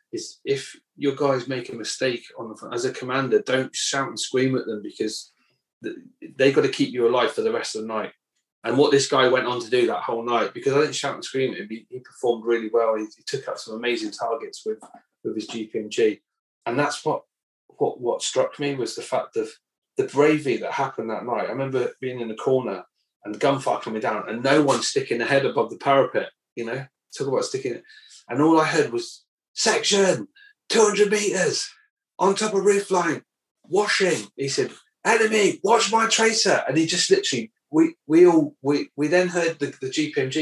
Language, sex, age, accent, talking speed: English, male, 30-49, British, 210 wpm